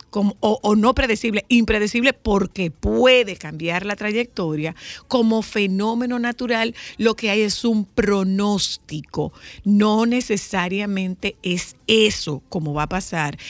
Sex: female